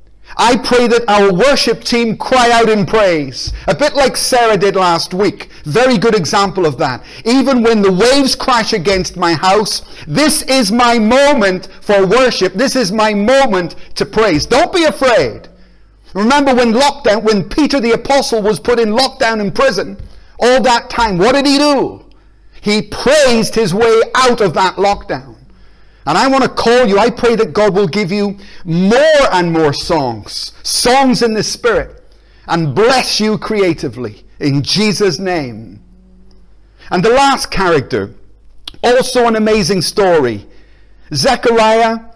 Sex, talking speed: male, 155 wpm